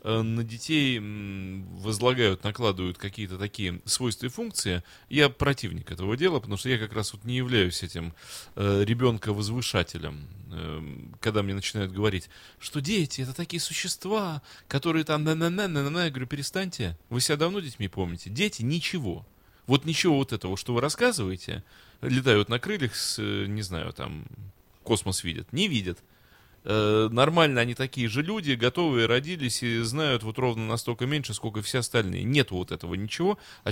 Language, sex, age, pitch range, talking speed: Russian, male, 30-49, 100-135 Hz, 155 wpm